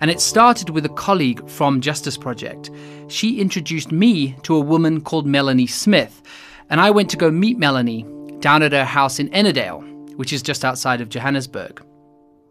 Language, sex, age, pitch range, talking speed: English, male, 30-49, 130-170 Hz, 180 wpm